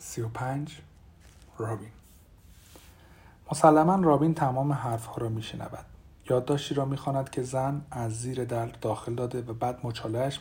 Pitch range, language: 100-135 Hz, Persian